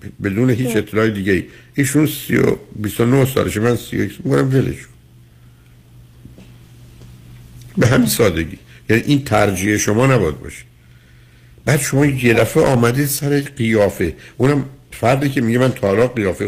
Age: 60-79